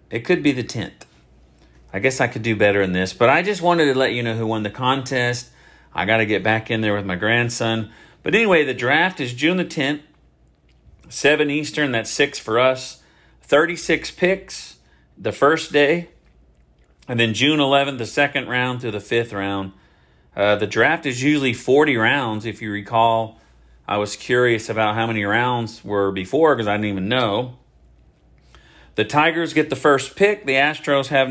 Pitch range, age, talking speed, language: 105-140 Hz, 40-59, 190 wpm, English